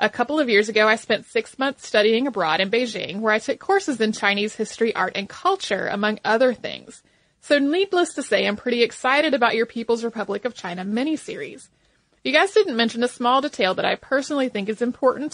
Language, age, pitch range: English, 30-49, 210-255 Hz